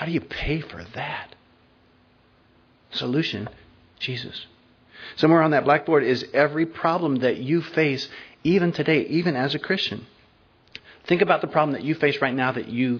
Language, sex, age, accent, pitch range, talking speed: English, male, 40-59, American, 110-130 Hz, 160 wpm